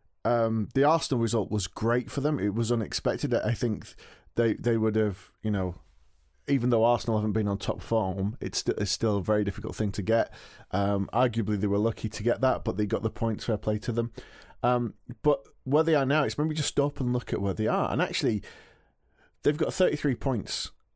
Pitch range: 105-120 Hz